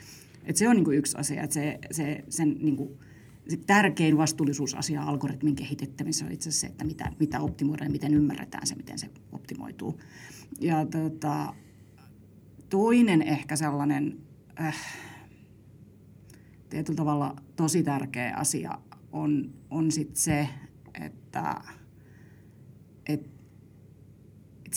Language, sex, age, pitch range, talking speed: Finnish, female, 30-49, 145-155 Hz, 110 wpm